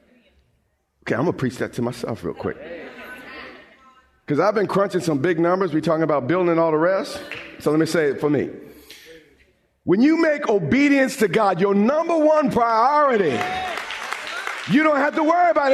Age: 50-69